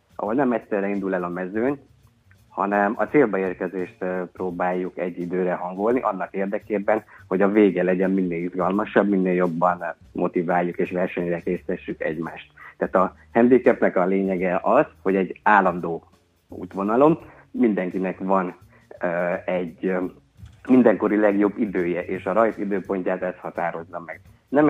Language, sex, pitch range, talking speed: Hungarian, male, 85-100 Hz, 130 wpm